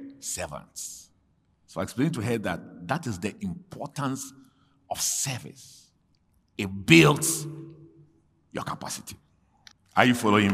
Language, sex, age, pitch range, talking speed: English, male, 50-69, 125-180 Hz, 115 wpm